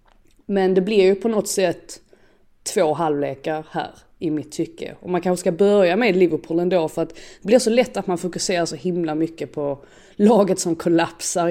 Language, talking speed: Swedish, 195 wpm